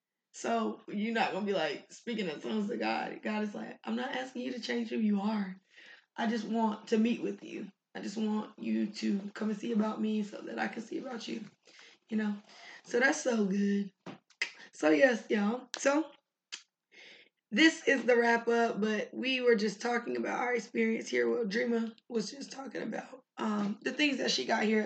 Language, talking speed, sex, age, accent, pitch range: English, 205 wpm, female, 20-39, American, 210-235 Hz